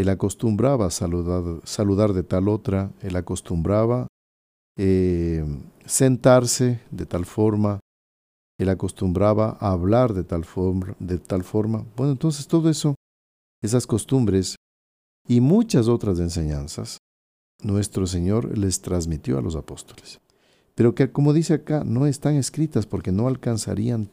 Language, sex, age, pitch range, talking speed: Spanish, male, 50-69, 85-125 Hz, 130 wpm